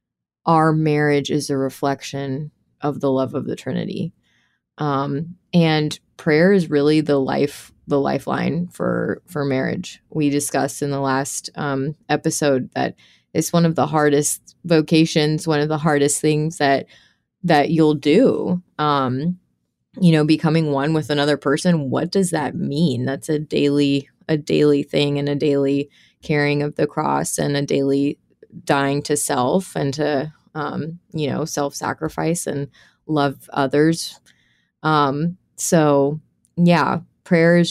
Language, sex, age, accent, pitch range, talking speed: English, female, 20-39, American, 140-160 Hz, 145 wpm